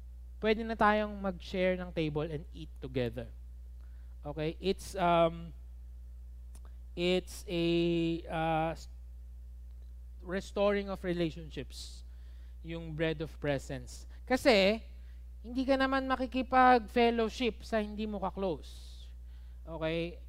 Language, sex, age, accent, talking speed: Filipino, male, 20-39, native, 100 wpm